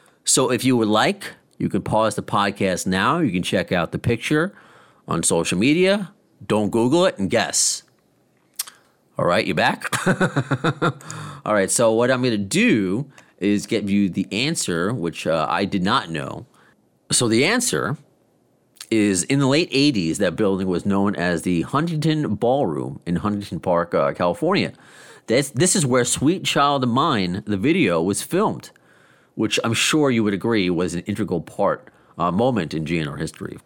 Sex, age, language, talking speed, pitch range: male, 40-59, English, 175 wpm, 95-130 Hz